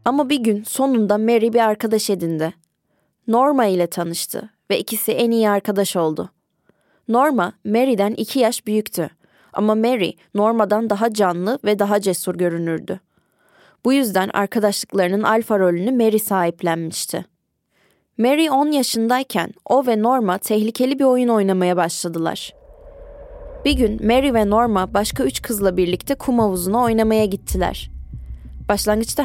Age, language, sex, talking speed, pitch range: 20-39, Turkish, female, 130 wpm, 185-235 Hz